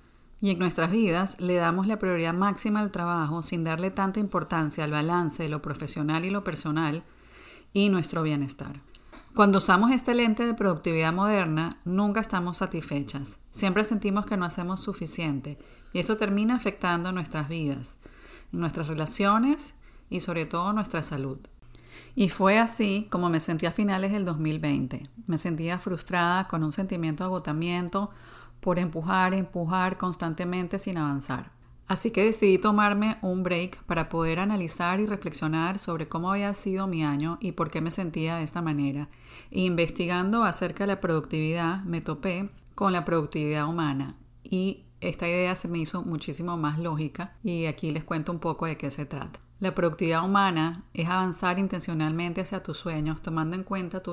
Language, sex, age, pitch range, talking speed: English, female, 40-59, 160-195 Hz, 165 wpm